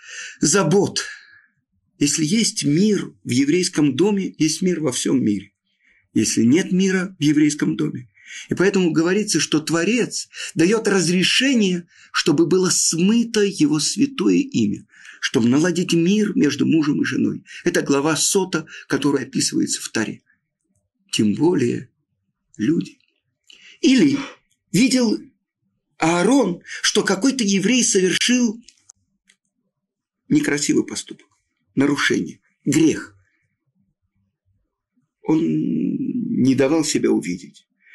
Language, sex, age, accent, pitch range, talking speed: Russian, male, 50-69, native, 150-215 Hz, 100 wpm